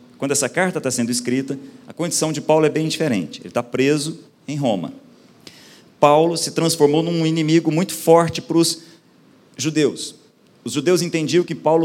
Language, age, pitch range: Portuguese, 40-59, 125-165 Hz